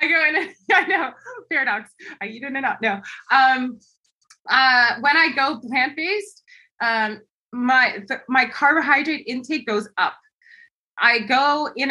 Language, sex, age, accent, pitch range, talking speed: English, female, 20-39, American, 195-255 Hz, 145 wpm